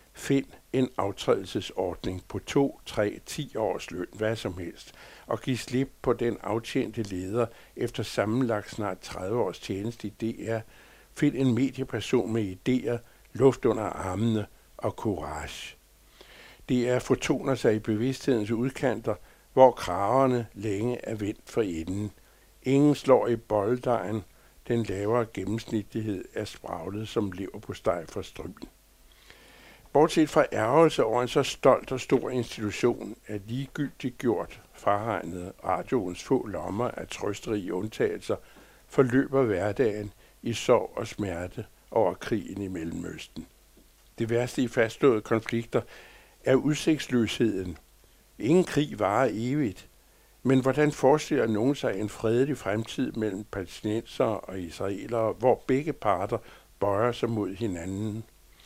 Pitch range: 105-130 Hz